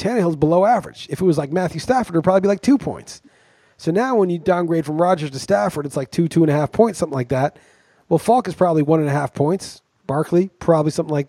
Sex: male